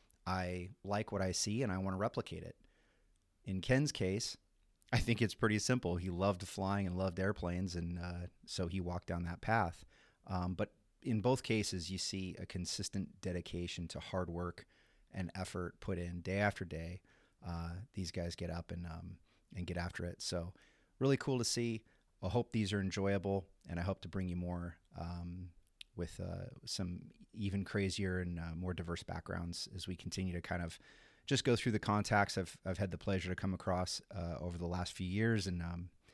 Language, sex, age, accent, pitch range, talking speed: English, male, 30-49, American, 90-105 Hz, 195 wpm